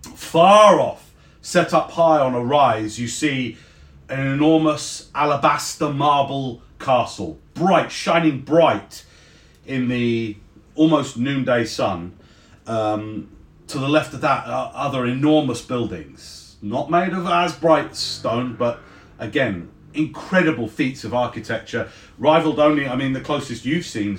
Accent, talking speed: British, 130 wpm